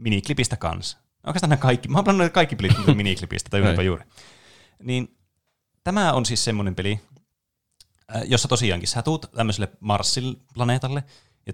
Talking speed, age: 145 wpm, 20-39